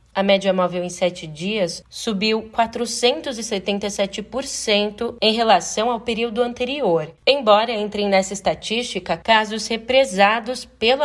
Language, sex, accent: Portuguese, female, Brazilian